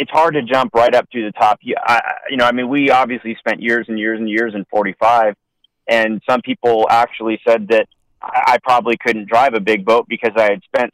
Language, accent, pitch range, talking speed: English, American, 105-120 Hz, 220 wpm